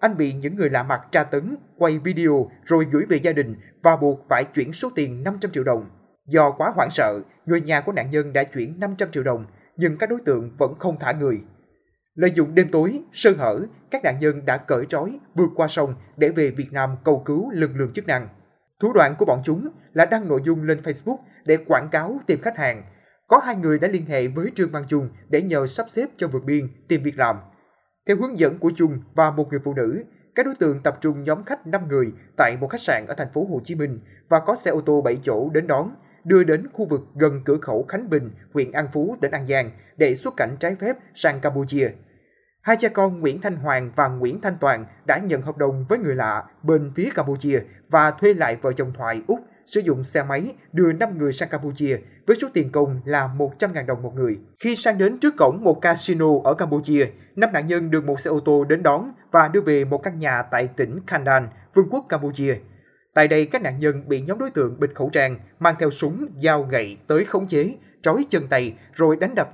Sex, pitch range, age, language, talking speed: male, 135-175 Hz, 20-39, Vietnamese, 235 wpm